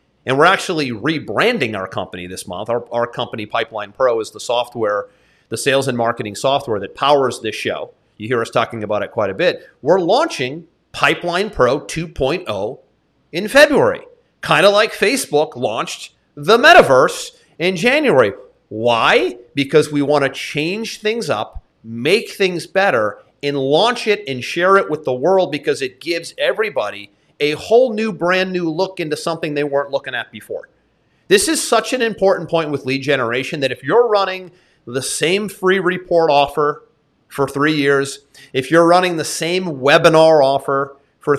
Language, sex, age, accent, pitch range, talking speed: English, male, 40-59, American, 140-195 Hz, 170 wpm